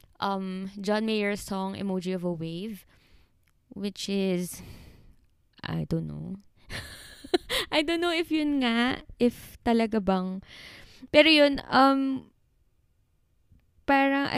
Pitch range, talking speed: 190-260 Hz, 110 wpm